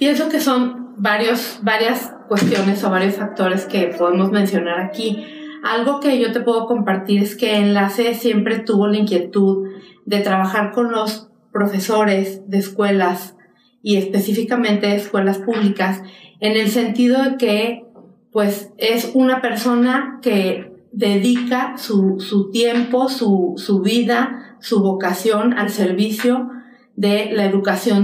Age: 40-59